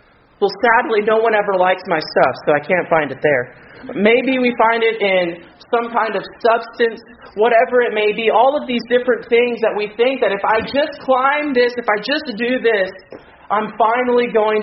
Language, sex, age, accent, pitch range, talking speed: English, male, 30-49, American, 145-225 Hz, 205 wpm